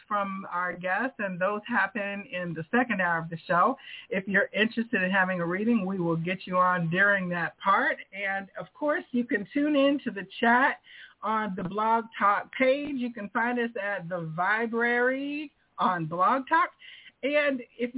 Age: 50-69